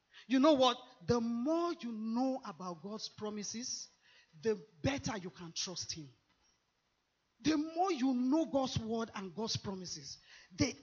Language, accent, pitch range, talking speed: English, Nigerian, 180-270 Hz, 145 wpm